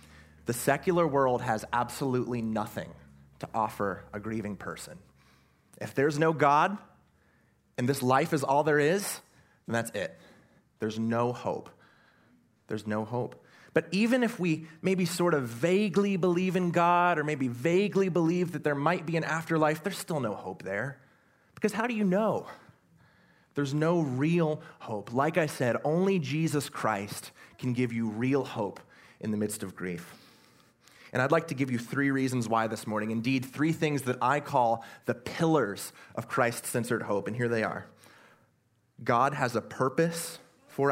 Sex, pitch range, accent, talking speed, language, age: male, 115-160 Hz, American, 165 wpm, English, 30-49